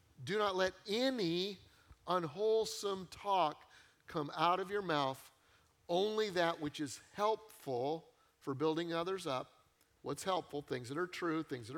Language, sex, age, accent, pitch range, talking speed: English, male, 50-69, American, 140-180 Hz, 145 wpm